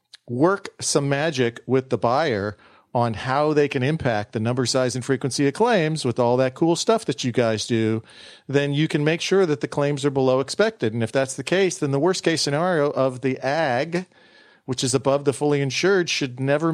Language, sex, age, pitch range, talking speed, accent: English, male, 40-59, 125-155 Hz, 210 wpm, American